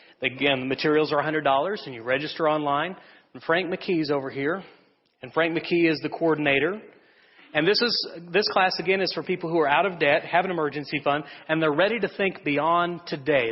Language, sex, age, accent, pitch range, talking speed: English, male, 40-59, American, 140-175 Hz, 200 wpm